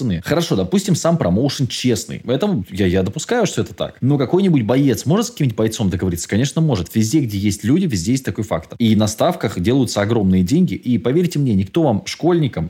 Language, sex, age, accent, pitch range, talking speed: Russian, male, 20-39, native, 100-160 Hz, 200 wpm